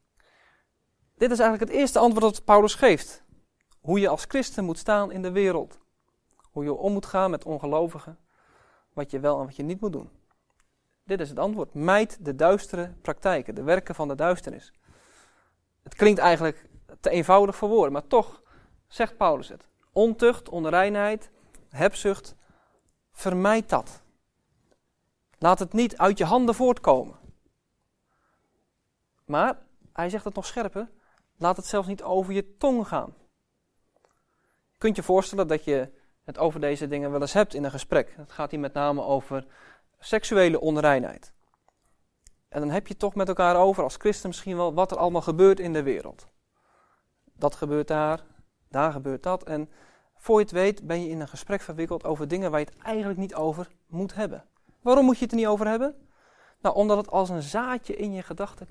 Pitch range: 155-205 Hz